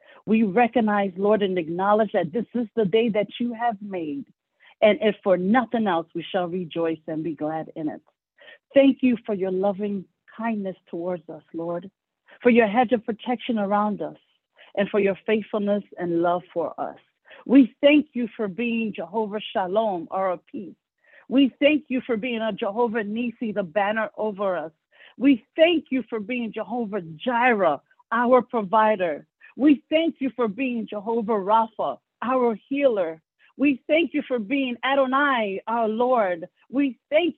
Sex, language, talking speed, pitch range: female, English, 160 wpm, 205-260 Hz